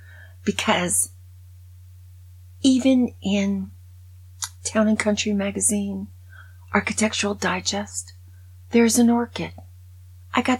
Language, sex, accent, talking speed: English, female, American, 75 wpm